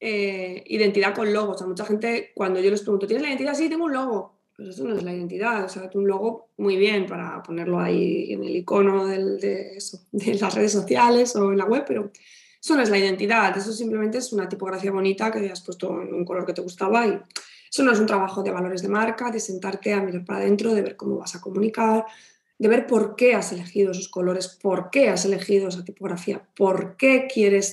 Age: 20-39